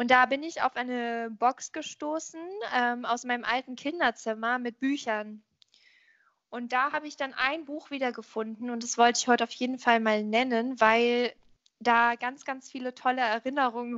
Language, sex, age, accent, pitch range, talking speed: German, female, 20-39, German, 230-275 Hz, 170 wpm